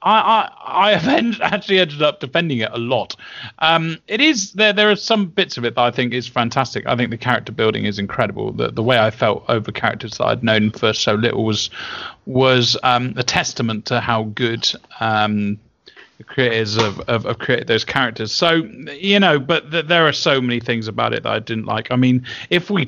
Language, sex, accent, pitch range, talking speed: English, male, British, 120-170 Hz, 210 wpm